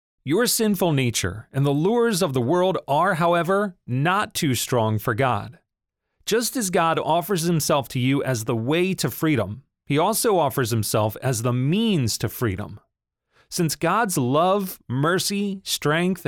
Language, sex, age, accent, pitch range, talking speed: English, male, 40-59, American, 120-180 Hz, 155 wpm